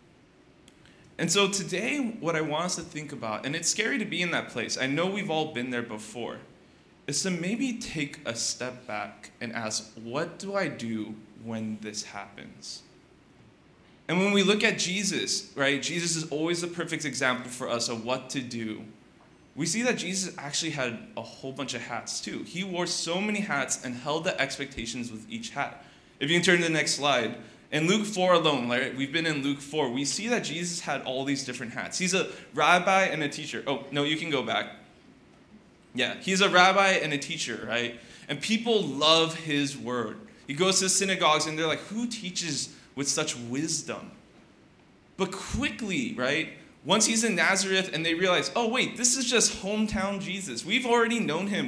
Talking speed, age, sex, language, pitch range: 195 wpm, 20-39, male, English, 135-190 Hz